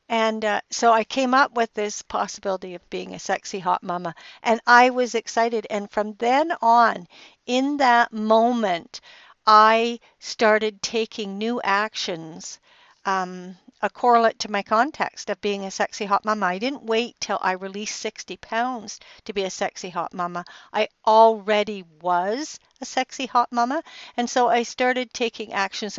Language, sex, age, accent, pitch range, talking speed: English, female, 60-79, American, 185-230 Hz, 160 wpm